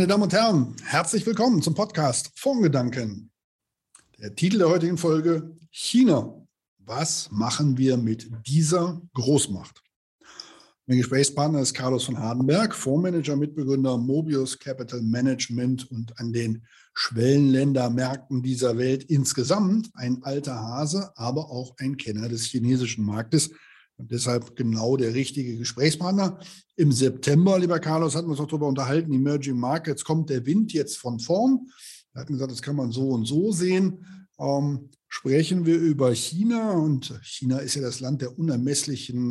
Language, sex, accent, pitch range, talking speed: German, male, German, 125-160 Hz, 145 wpm